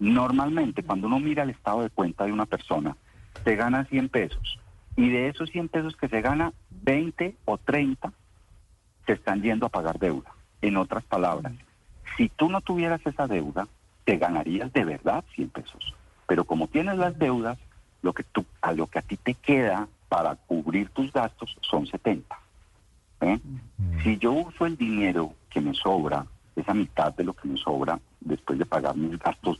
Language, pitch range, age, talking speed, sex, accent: Spanish, 95-135 Hz, 50-69, 180 wpm, male, Colombian